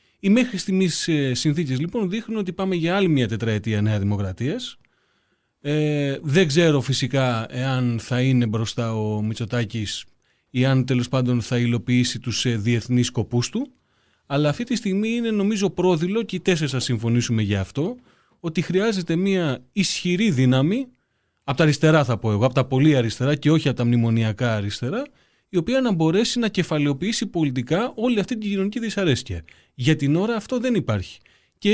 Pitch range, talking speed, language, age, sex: 125-195 Hz, 165 wpm, Greek, 30-49, male